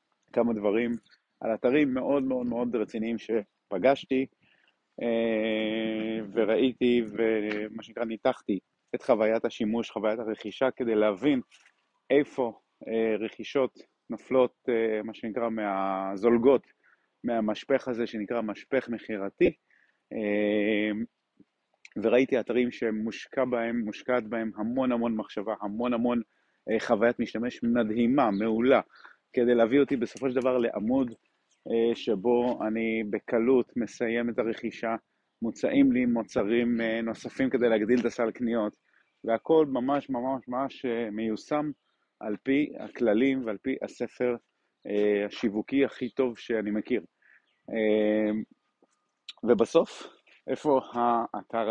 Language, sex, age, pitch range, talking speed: Hebrew, male, 30-49, 110-130 Hz, 100 wpm